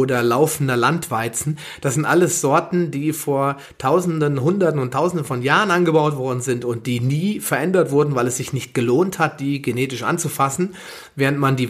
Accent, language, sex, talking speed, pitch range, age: German, German, male, 180 wpm, 125-150 Hz, 30-49